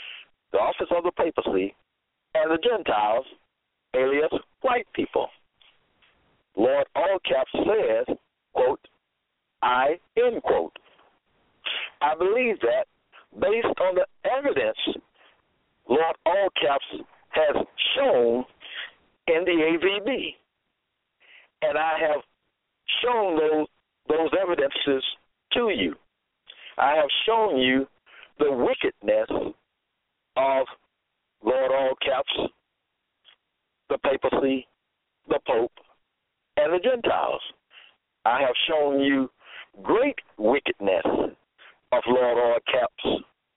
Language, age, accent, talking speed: English, 60-79, American, 95 wpm